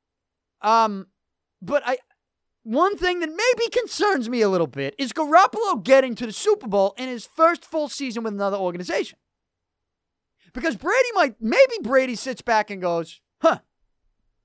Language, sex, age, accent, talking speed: English, male, 30-49, American, 155 wpm